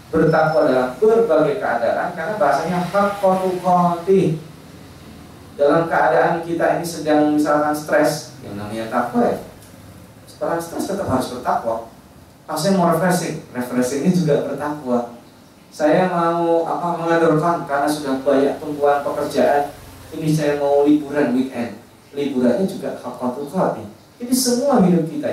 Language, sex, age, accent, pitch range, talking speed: Indonesian, male, 30-49, native, 120-160 Hz, 130 wpm